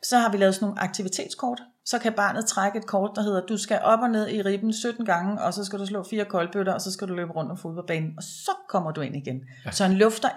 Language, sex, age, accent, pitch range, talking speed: Danish, female, 30-49, native, 175-220 Hz, 280 wpm